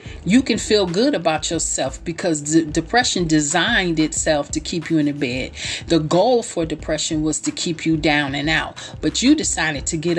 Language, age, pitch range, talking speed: English, 40-59, 155-195 Hz, 195 wpm